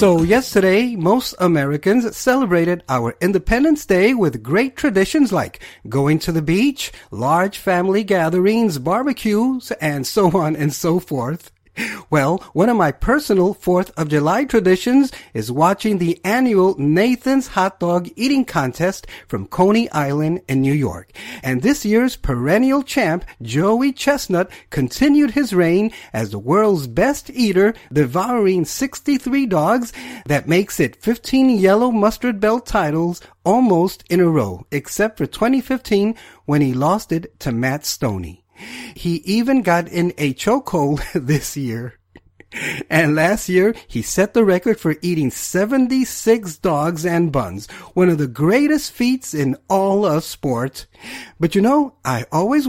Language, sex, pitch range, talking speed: English, male, 150-225 Hz, 140 wpm